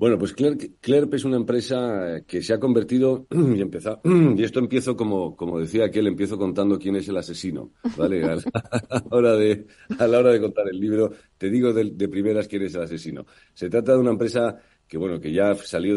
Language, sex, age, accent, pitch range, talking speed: Spanish, male, 40-59, Spanish, 85-110 Hz, 195 wpm